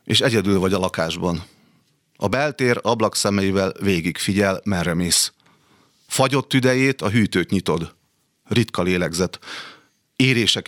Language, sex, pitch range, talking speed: Hungarian, male, 90-110 Hz, 110 wpm